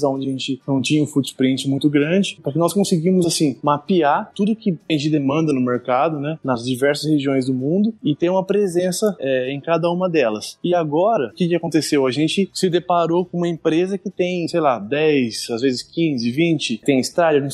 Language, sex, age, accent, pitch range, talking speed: Portuguese, male, 20-39, Brazilian, 140-170 Hz, 200 wpm